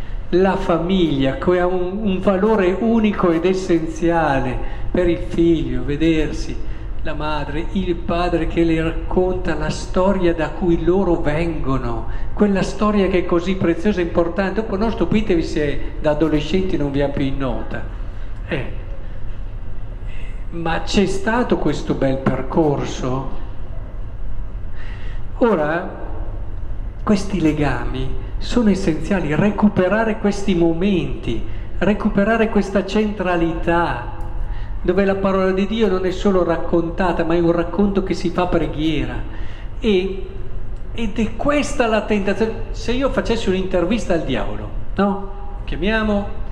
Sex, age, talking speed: male, 50-69, 120 wpm